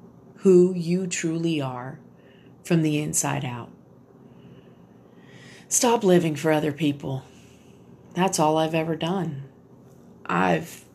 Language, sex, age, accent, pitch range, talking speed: English, female, 40-59, American, 140-165 Hz, 105 wpm